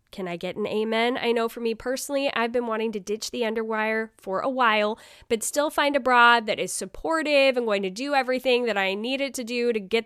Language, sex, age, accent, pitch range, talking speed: English, female, 10-29, American, 210-290 Hz, 245 wpm